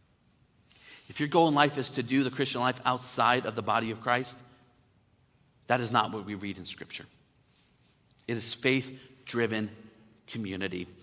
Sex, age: male, 40-59